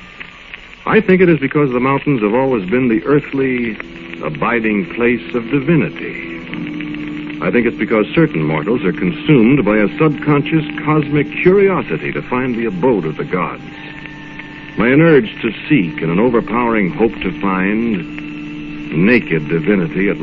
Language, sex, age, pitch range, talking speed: English, male, 60-79, 85-125 Hz, 150 wpm